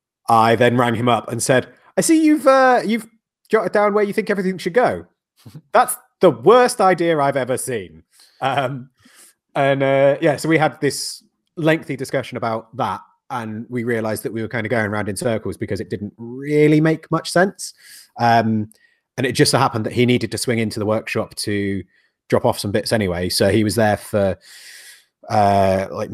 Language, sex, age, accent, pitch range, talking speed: English, male, 30-49, British, 100-130 Hz, 195 wpm